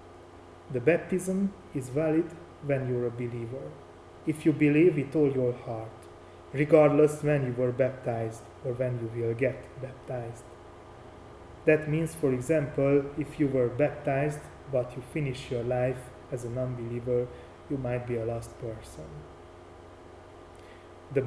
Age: 30-49